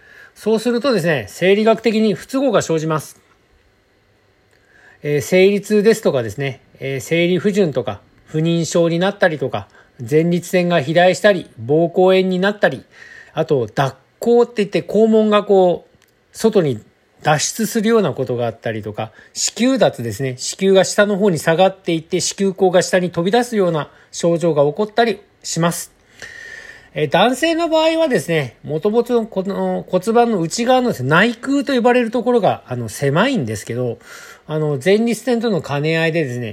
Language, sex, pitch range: Japanese, male, 145-215 Hz